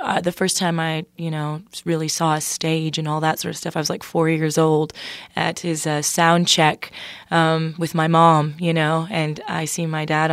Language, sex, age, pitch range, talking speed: English, female, 20-39, 155-175 Hz, 225 wpm